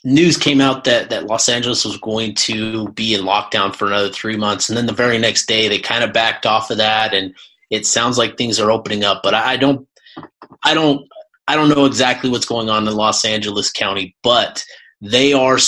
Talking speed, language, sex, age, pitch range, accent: 220 wpm, English, male, 30-49, 110-135 Hz, American